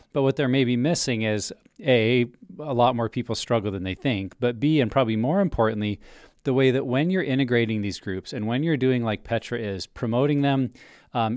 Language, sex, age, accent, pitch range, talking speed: English, male, 40-59, American, 115-140 Hz, 205 wpm